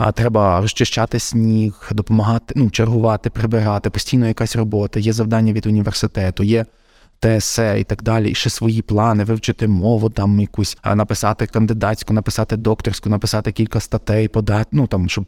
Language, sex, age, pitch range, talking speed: Ukrainian, male, 20-39, 105-125 Hz, 155 wpm